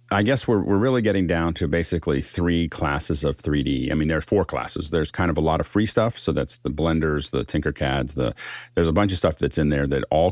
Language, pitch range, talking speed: English, 75-95 Hz, 255 wpm